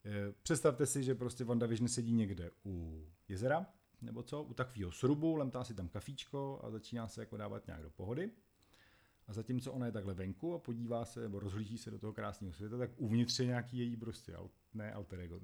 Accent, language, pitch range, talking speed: native, Czech, 100-125 Hz, 205 wpm